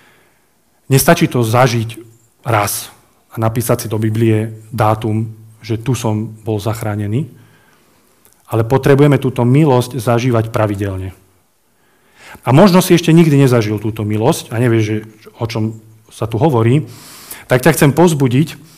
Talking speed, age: 130 wpm, 30-49